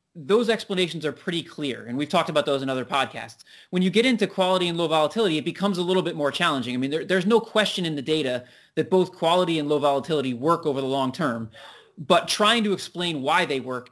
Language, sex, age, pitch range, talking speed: English, male, 30-49, 140-180 Hz, 235 wpm